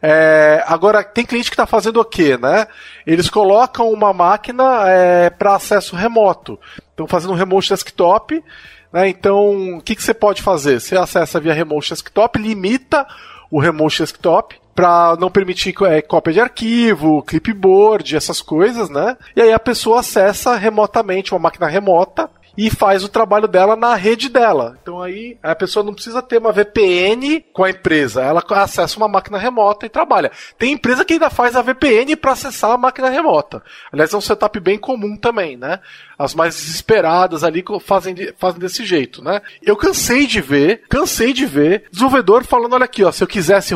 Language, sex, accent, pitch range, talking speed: Portuguese, male, Brazilian, 180-230 Hz, 170 wpm